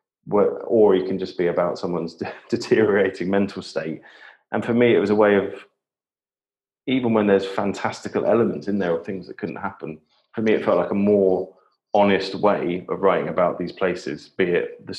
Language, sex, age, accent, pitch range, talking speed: English, male, 30-49, British, 90-120 Hz, 195 wpm